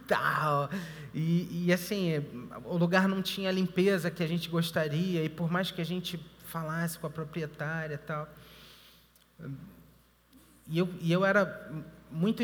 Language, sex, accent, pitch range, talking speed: Portuguese, male, Brazilian, 140-175 Hz, 145 wpm